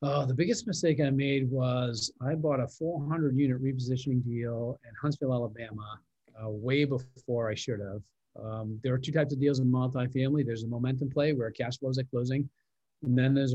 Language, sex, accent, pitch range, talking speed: English, male, American, 120-145 Hz, 195 wpm